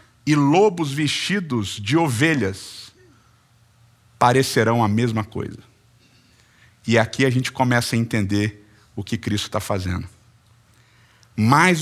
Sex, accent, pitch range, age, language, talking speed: male, Brazilian, 115-180 Hz, 50-69, Portuguese, 110 wpm